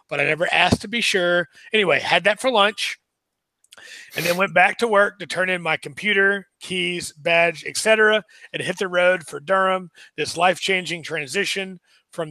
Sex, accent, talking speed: male, American, 180 wpm